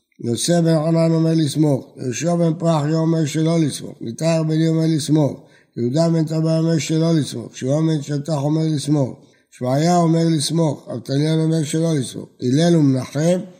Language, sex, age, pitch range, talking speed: Hebrew, male, 60-79, 130-160 Hz, 155 wpm